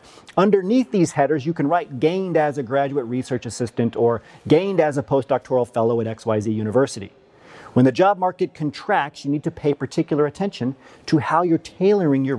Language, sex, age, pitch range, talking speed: English, male, 40-59, 125-175 Hz, 180 wpm